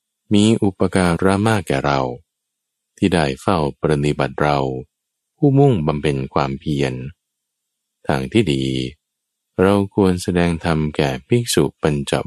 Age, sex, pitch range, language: 20-39, male, 70-95 Hz, Thai